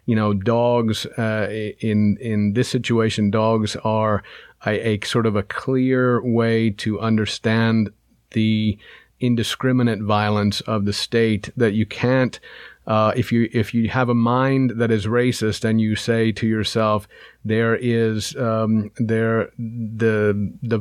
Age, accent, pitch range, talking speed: 40-59, American, 105-120 Hz, 145 wpm